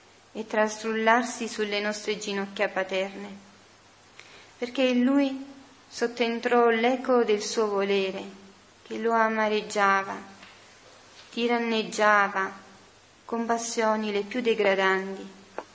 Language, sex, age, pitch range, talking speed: Italian, female, 30-49, 205-230 Hz, 90 wpm